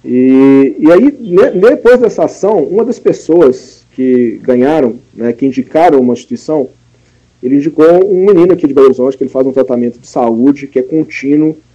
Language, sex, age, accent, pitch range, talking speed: Portuguese, male, 40-59, Brazilian, 125-160 Hz, 180 wpm